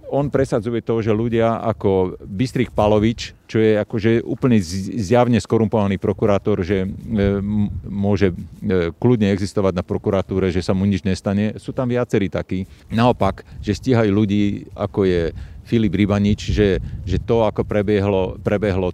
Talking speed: 135 wpm